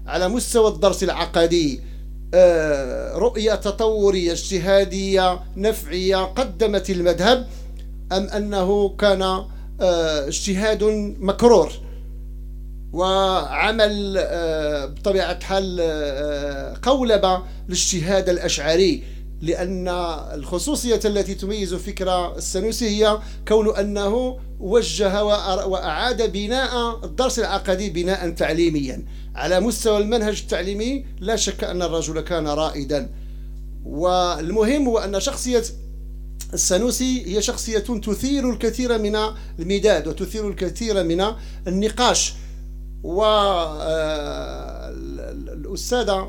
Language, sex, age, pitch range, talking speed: English, male, 50-69, 160-215 Hz, 80 wpm